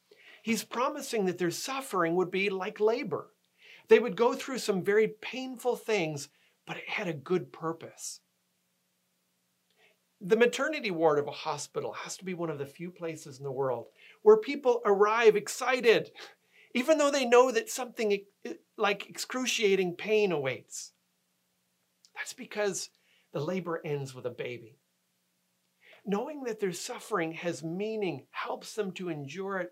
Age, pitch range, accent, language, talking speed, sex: 40-59, 160-220 Hz, American, English, 145 wpm, male